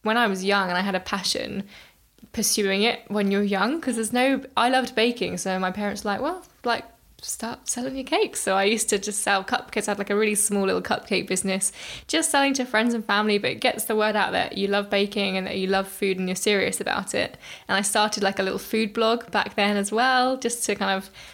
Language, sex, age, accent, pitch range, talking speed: English, female, 10-29, British, 200-230 Hz, 250 wpm